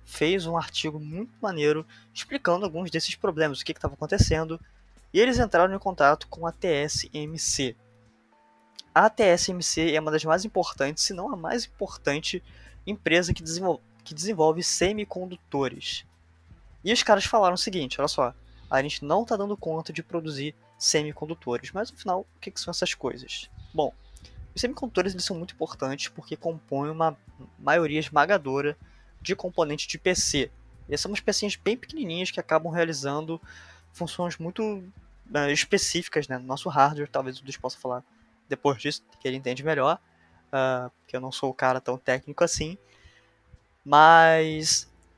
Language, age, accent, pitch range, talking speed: Portuguese, 20-39, Brazilian, 130-175 Hz, 160 wpm